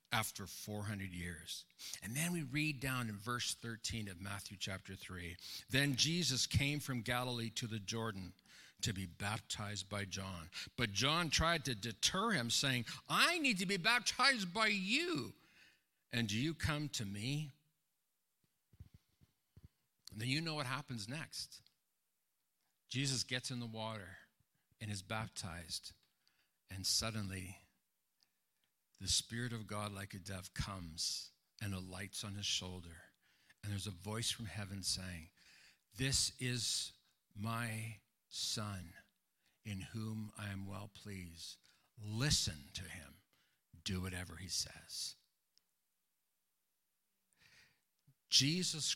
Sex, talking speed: male, 125 wpm